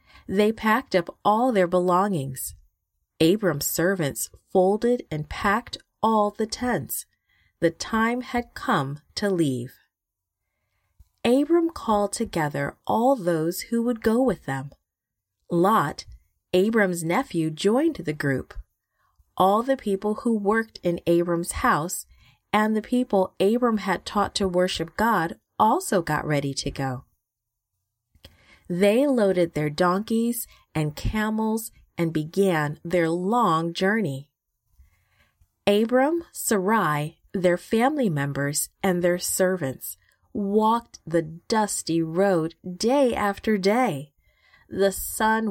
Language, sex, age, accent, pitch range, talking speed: English, female, 30-49, American, 150-220 Hz, 115 wpm